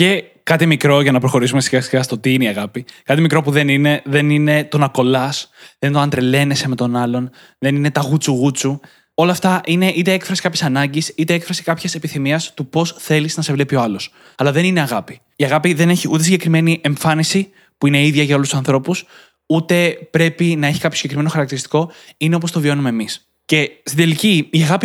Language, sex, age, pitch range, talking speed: Greek, male, 20-39, 140-175 Hz, 210 wpm